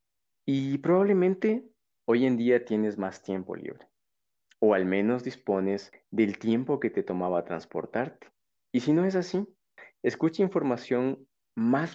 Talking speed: 135 wpm